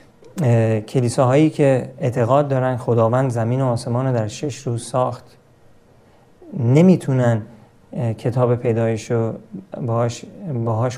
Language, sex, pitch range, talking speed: Persian, male, 120-140 Hz, 105 wpm